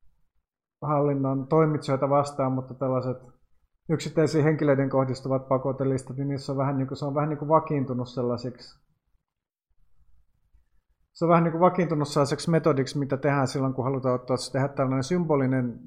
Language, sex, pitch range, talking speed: Finnish, male, 125-150 Hz, 135 wpm